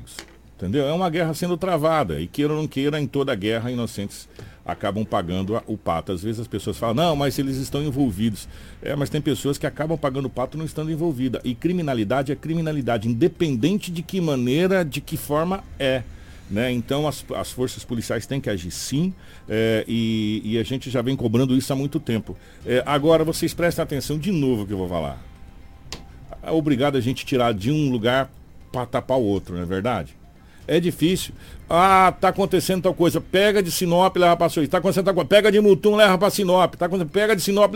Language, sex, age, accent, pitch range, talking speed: Portuguese, male, 60-79, Brazilian, 115-165 Hz, 195 wpm